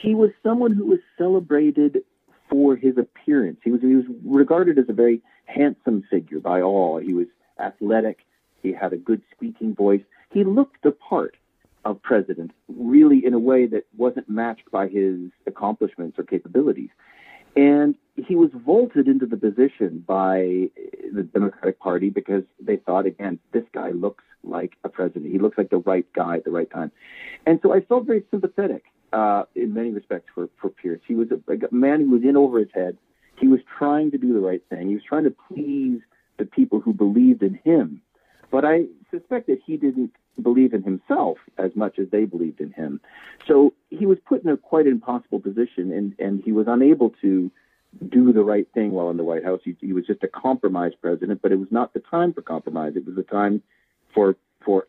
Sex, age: male, 40-59